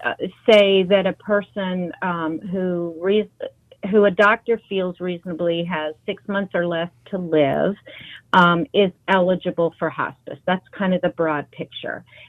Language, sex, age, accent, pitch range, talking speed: English, female, 40-59, American, 165-205 Hz, 140 wpm